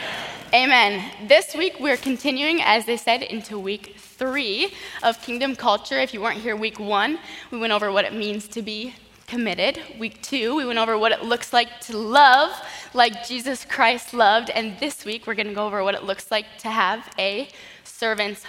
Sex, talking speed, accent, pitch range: female, 195 wpm, American, 200-250 Hz